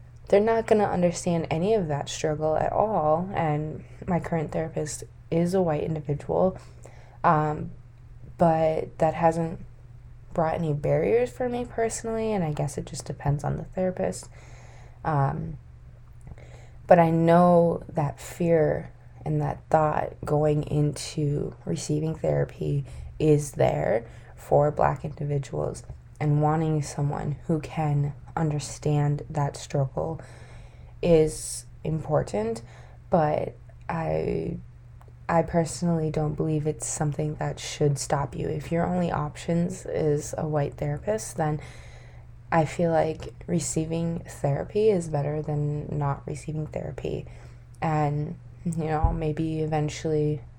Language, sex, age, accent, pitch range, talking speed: English, female, 20-39, American, 135-160 Hz, 120 wpm